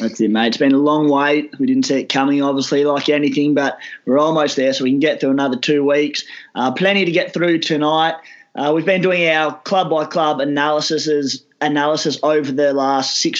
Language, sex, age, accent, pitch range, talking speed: English, male, 20-39, Australian, 140-160 Hz, 215 wpm